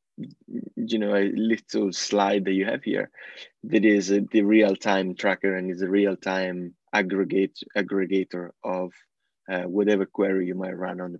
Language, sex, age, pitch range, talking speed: English, male, 20-39, 95-115 Hz, 165 wpm